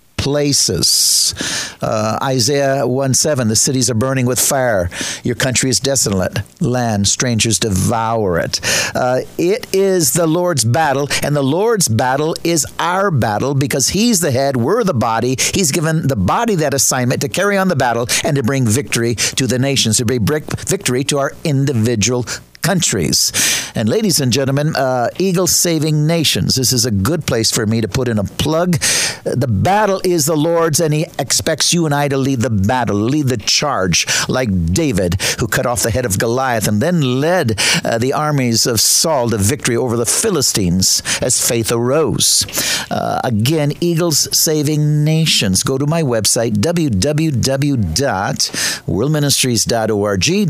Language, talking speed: English, 165 wpm